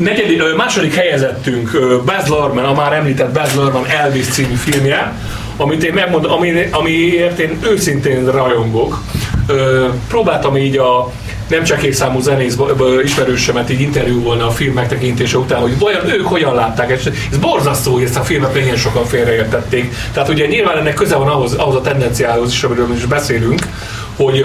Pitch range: 120-145 Hz